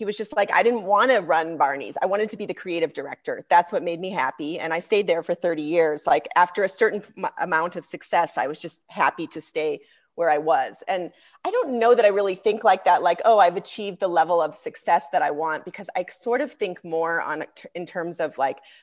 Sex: female